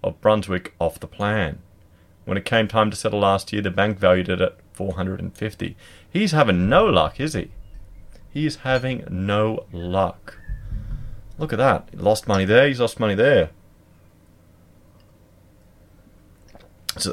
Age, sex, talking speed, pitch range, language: 30-49, male, 160 wpm, 90-110 Hz, English